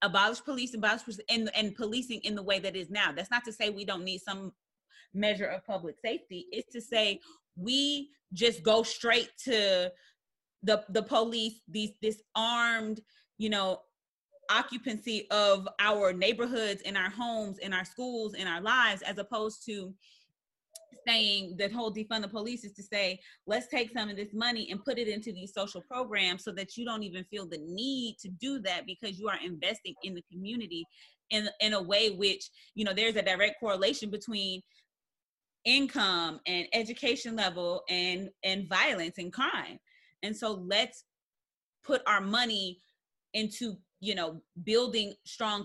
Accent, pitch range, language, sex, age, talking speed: American, 190-230 Hz, English, female, 30-49, 170 wpm